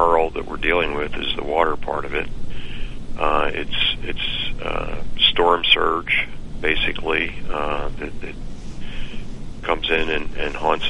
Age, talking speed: 40-59, 130 wpm